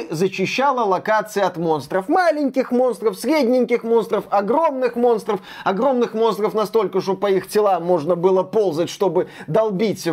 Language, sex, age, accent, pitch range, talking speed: Russian, male, 30-49, native, 170-225 Hz, 130 wpm